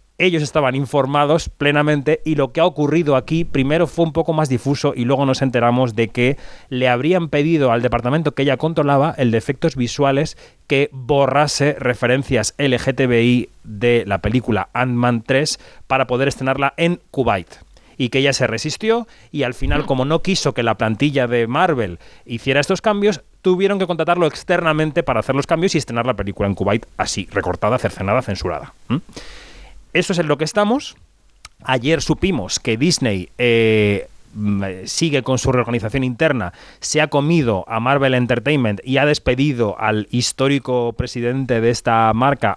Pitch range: 120-150 Hz